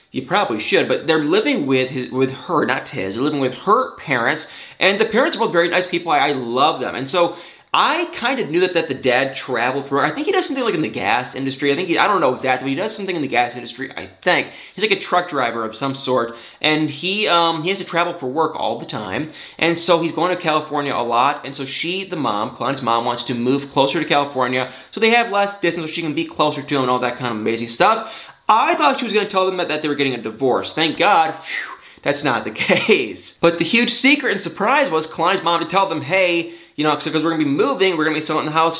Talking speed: 270 wpm